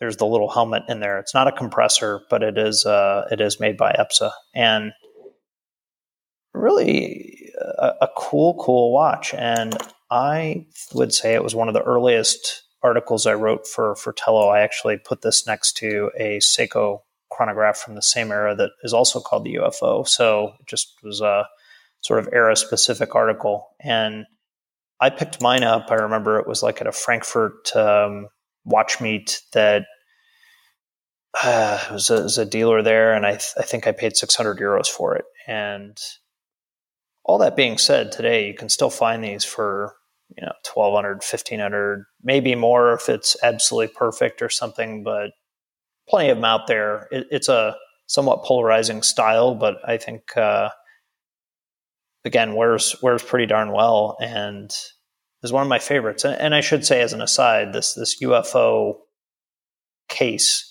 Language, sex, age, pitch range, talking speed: English, male, 30-49, 105-130 Hz, 175 wpm